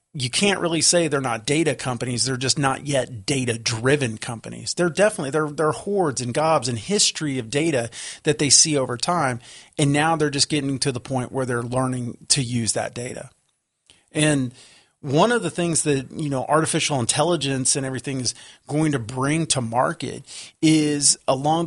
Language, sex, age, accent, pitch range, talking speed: English, male, 30-49, American, 125-160 Hz, 180 wpm